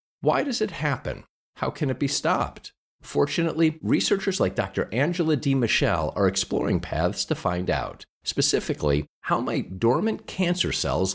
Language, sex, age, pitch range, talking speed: English, male, 50-69, 95-140 Hz, 145 wpm